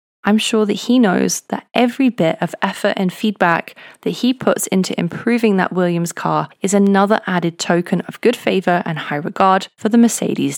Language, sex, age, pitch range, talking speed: English, female, 20-39, 175-220 Hz, 185 wpm